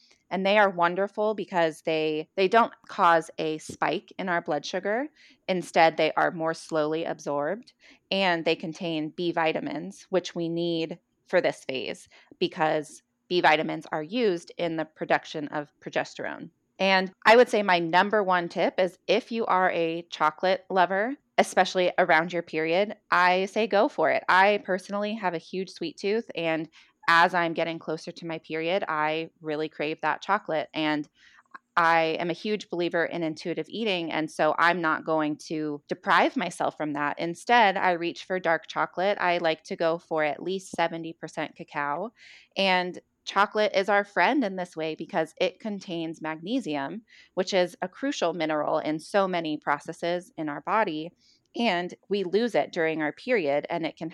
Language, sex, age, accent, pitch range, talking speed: English, female, 20-39, American, 160-190 Hz, 170 wpm